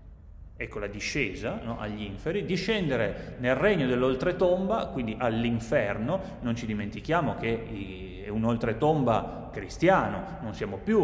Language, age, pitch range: Italian, 30-49, 115-170 Hz